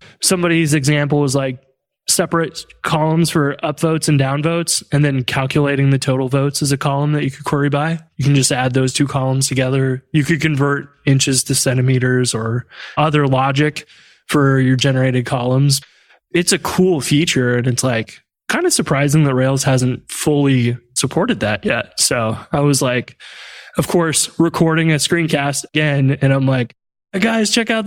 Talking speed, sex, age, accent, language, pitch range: 170 wpm, male, 20-39, American, English, 130-155 Hz